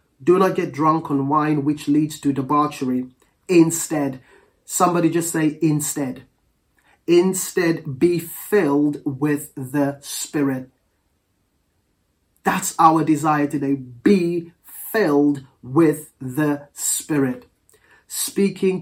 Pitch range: 140-180 Hz